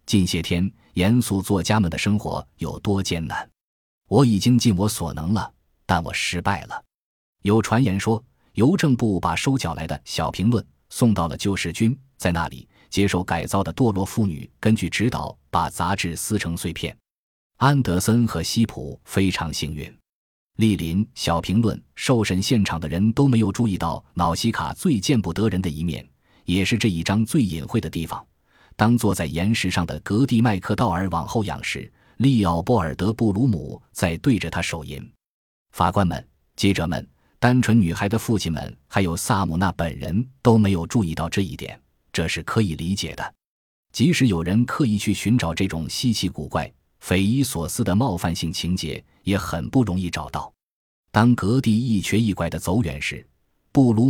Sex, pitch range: male, 85-115 Hz